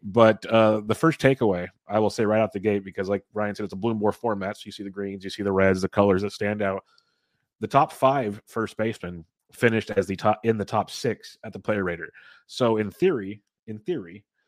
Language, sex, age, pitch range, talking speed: English, male, 30-49, 100-110 Hz, 230 wpm